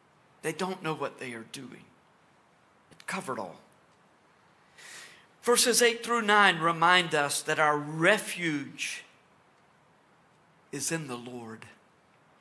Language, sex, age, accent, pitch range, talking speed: English, male, 50-69, American, 160-210 Hz, 110 wpm